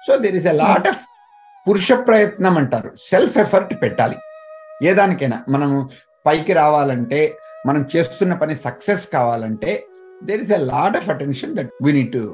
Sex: male